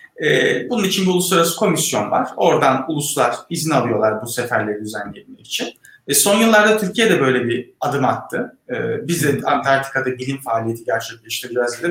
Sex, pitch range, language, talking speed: male, 135-185 Hz, Turkish, 125 wpm